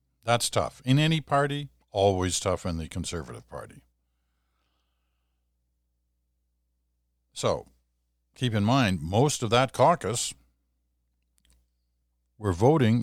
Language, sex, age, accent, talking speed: English, male, 60-79, American, 95 wpm